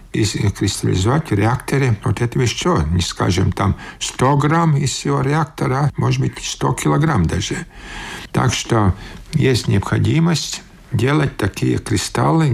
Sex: male